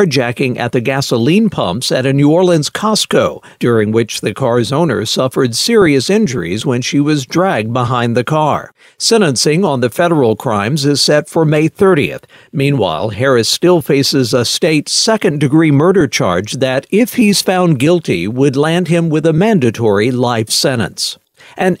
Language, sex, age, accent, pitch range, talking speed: English, male, 50-69, American, 130-185 Hz, 160 wpm